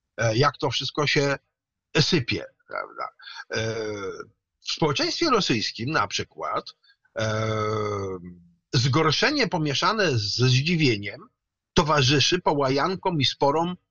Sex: male